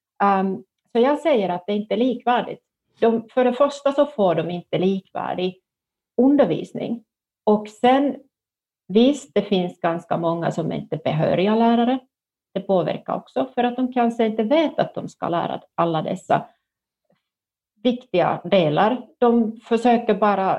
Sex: female